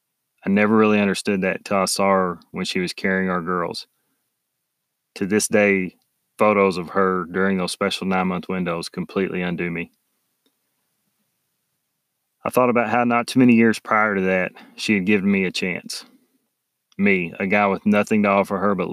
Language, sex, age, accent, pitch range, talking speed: English, male, 30-49, American, 95-105 Hz, 175 wpm